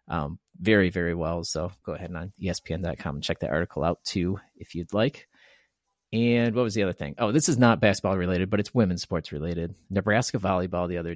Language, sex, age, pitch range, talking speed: English, male, 30-49, 90-105 Hz, 215 wpm